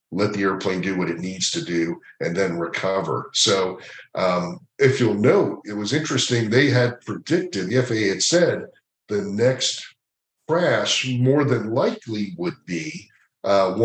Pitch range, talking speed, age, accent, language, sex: 95-120 Hz, 155 wpm, 50-69, American, English, male